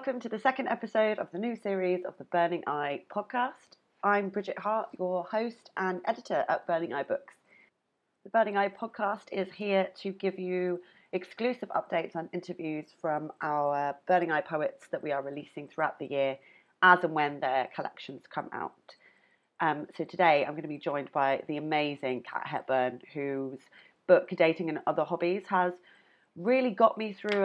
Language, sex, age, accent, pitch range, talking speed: English, female, 30-49, British, 145-190 Hz, 175 wpm